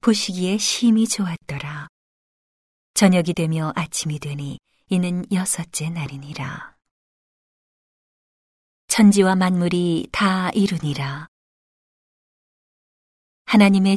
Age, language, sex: 40-59, Korean, female